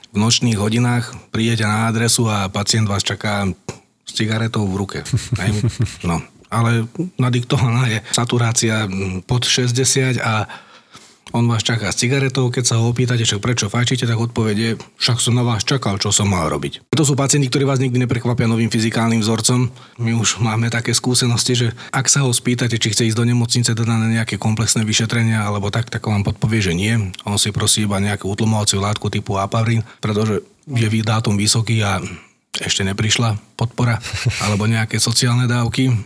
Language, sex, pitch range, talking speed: Slovak, male, 105-125 Hz, 165 wpm